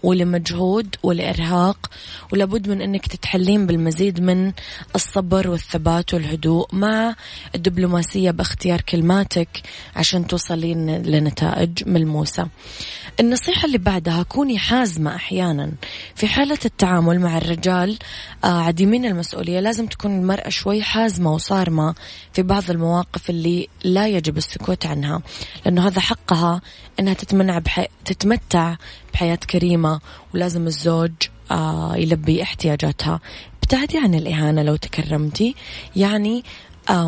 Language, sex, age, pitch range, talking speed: Arabic, female, 20-39, 165-195 Hz, 105 wpm